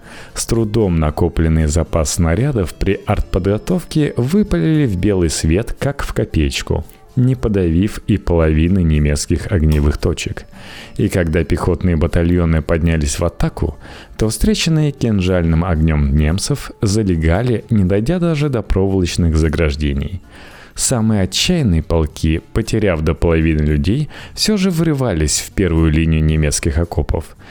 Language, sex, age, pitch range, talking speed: Russian, male, 30-49, 80-115 Hz, 120 wpm